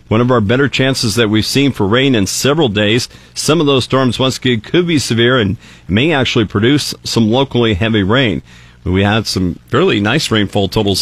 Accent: American